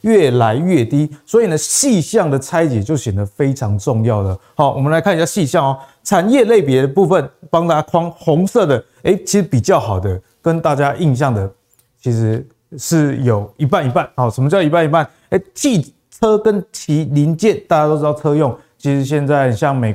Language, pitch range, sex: Chinese, 125-170 Hz, male